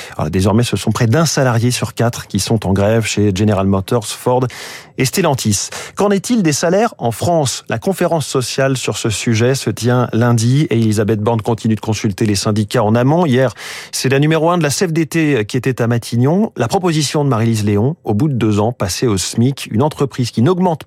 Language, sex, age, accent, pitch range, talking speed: French, male, 40-59, French, 110-145 Hz, 210 wpm